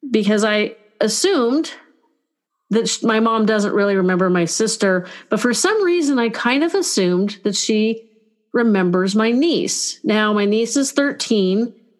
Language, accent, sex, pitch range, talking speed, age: English, American, female, 180-240 Hz, 145 wpm, 40-59